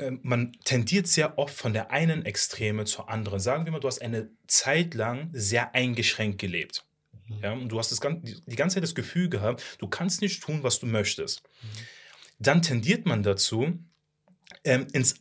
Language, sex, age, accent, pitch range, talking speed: German, male, 30-49, German, 110-140 Hz, 180 wpm